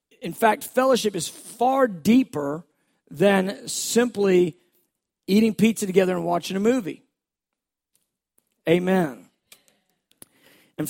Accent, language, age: American, English, 40-59